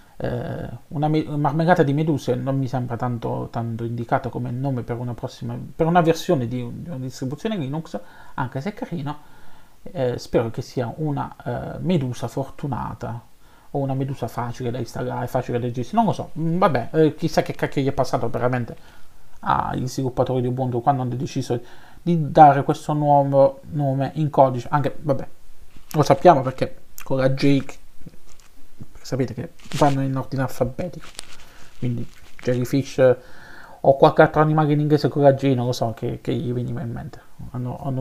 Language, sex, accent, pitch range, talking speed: Italian, male, native, 125-155 Hz, 170 wpm